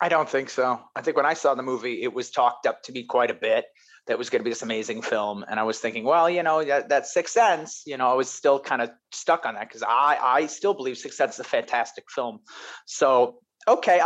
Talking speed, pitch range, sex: 270 wpm, 115-165 Hz, male